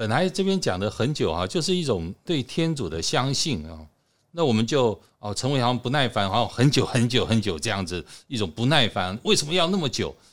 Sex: male